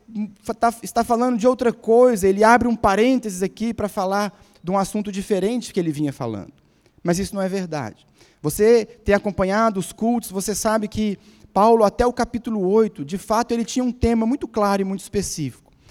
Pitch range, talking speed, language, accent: 185-235 Hz, 185 wpm, Portuguese, Brazilian